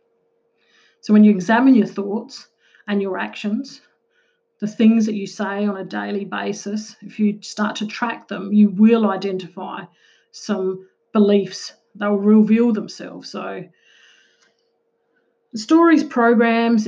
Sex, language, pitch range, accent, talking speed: female, English, 205-235 Hz, Australian, 130 wpm